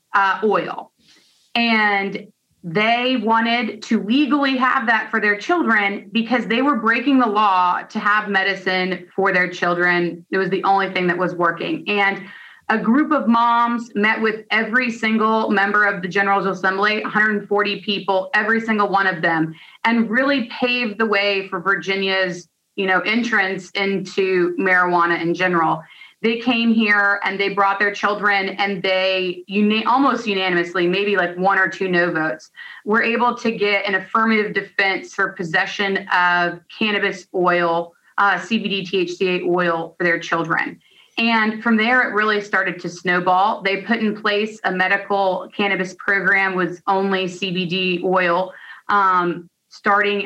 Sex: female